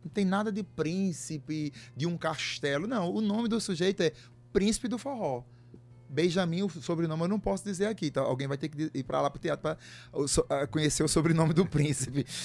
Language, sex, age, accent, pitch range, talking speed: Portuguese, male, 20-39, Brazilian, 120-170 Hz, 200 wpm